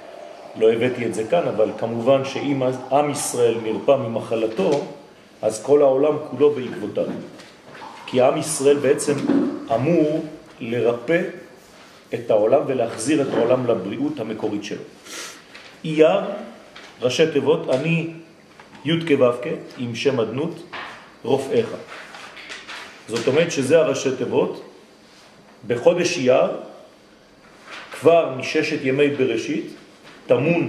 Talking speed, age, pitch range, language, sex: 105 wpm, 40-59, 125-165 Hz, French, male